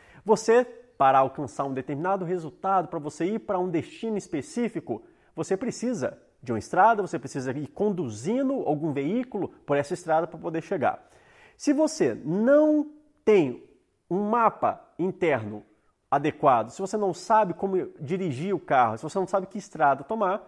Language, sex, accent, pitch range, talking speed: Portuguese, male, Brazilian, 145-200 Hz, 155 wpm